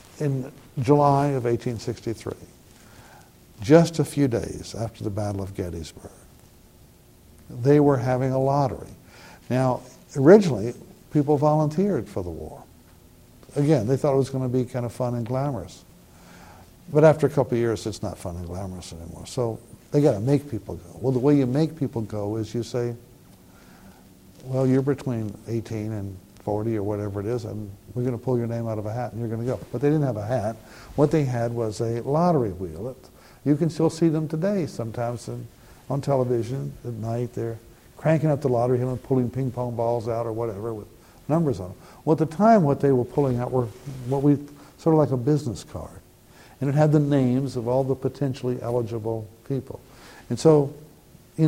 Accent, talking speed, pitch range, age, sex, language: American, 195 wpm, 115-140 Hz, 60-79, male, English